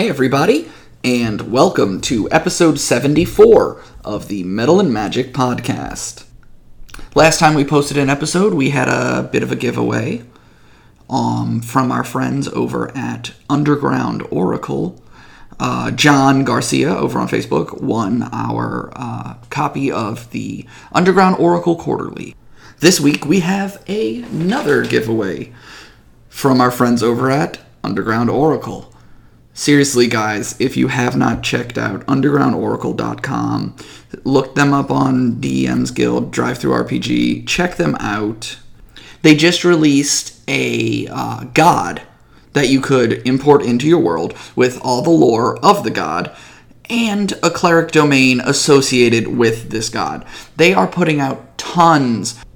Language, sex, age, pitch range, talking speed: English, male, 30-49, 110-155 Hz, 130 wpm